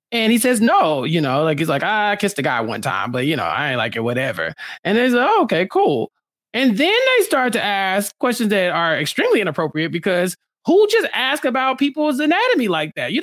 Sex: male